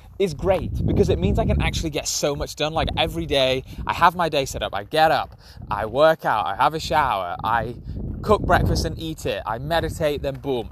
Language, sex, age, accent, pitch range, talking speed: English, male, 20-39, British, 120-170 Hz, 230 wpm